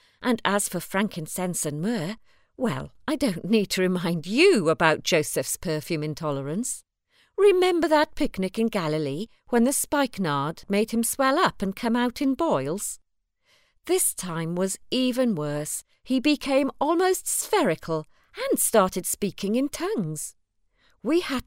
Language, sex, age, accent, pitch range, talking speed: English, female, 40-59, British, 170-270 Hz, 140 wpm